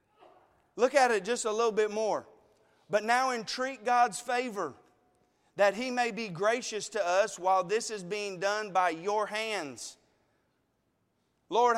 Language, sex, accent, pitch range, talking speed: English, male, American, 185-230 Hz, 150 wpm